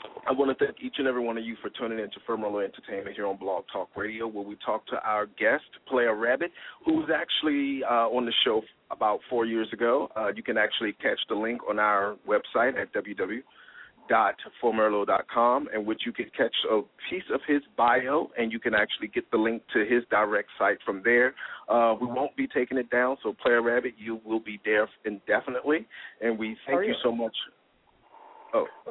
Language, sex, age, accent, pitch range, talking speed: English, male, 40-59, American, 110-145 Hz, 200 wpm